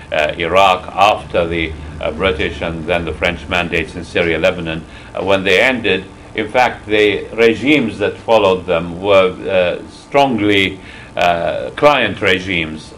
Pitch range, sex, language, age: 90-115 Hz, male, English, 60-79